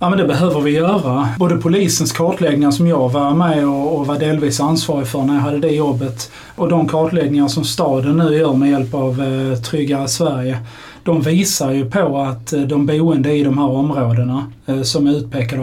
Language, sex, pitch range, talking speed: Swedish, male, 135-160 Hz, 190 wpm